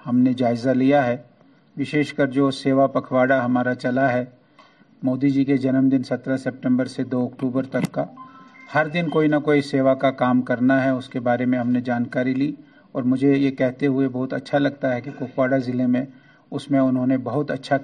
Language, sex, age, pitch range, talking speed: Urdu, male, 50-69, 130-145 Hz, 210 wpm